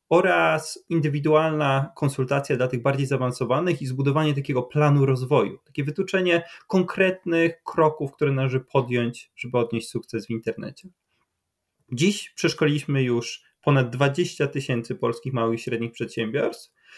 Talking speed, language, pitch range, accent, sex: 125 wpm, Polish, 130-170 Hz, native, male